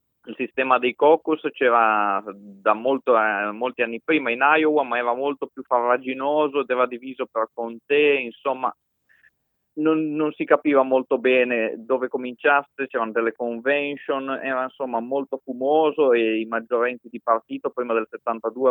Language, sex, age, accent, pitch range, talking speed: Italian, male, 30-49, native, 115-145 Hz, 150 wpm